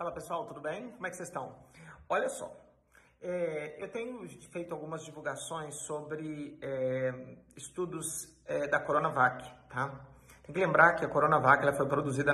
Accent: Brazilian